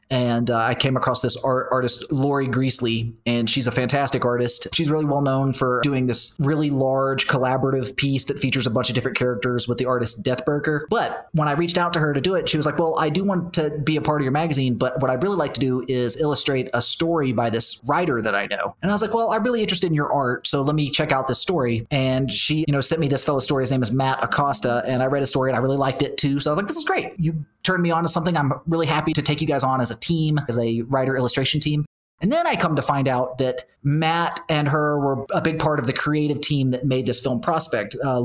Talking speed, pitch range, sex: 275 wpm, 125-150 Hz, male